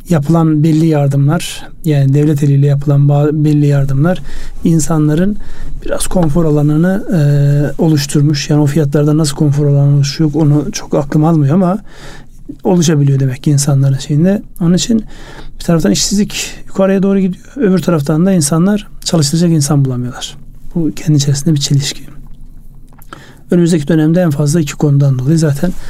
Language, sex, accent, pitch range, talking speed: Turkish, male, native, 140-165 Hz, 140 wpm